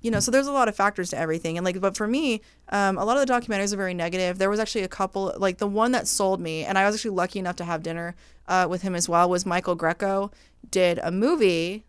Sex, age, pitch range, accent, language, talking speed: female, 20-39, 165-195 Hz, American, English, 280 wpm